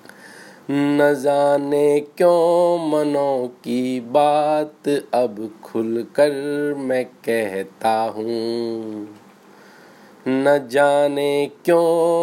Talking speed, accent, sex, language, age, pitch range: 60 wpm, native, male, Hindi, 20-39, 105-145 Hz